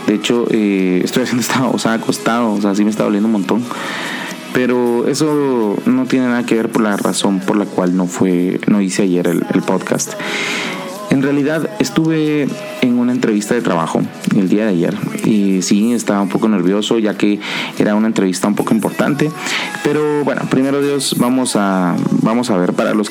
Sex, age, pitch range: male, 30-49, 100-135 Hz